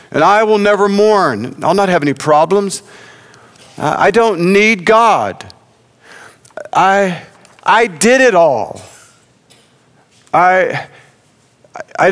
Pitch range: 135-185 Hz